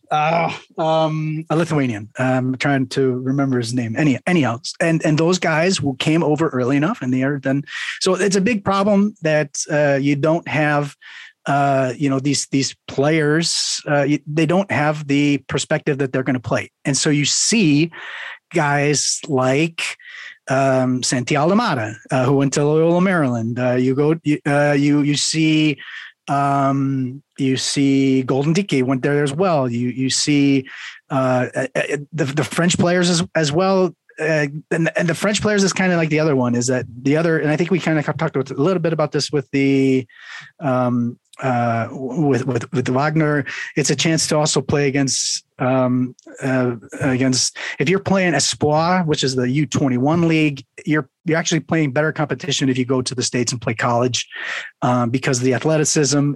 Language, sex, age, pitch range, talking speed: English, male, 30-49, 130-160 Hz, 185 wpm